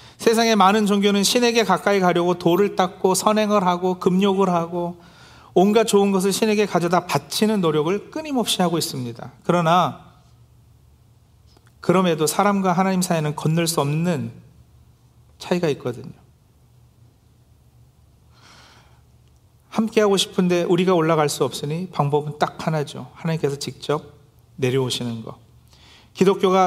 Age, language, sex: 40-59, Korean, male